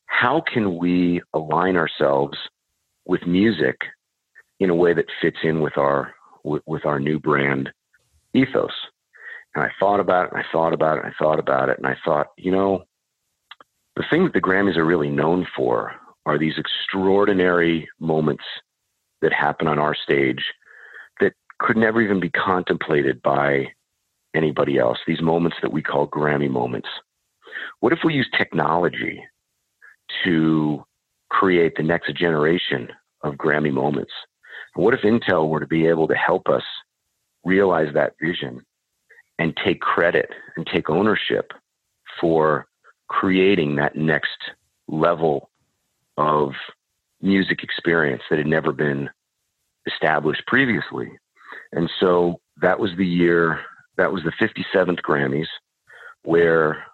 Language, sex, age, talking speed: English, male, 40-59, 140 wpm